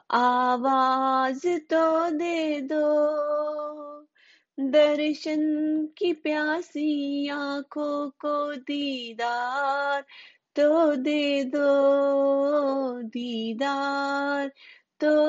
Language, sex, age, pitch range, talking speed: Hindi, female, 30-49, 280-315 Hz, 60 wpm